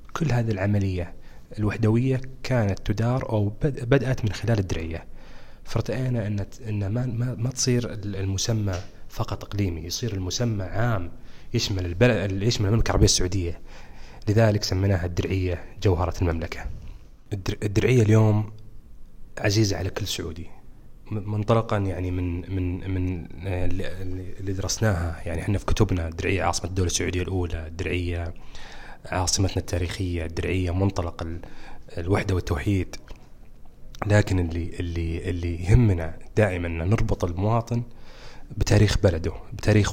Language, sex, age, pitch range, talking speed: Arabic, male, 30-49, 90-110 Hz, 110 wpm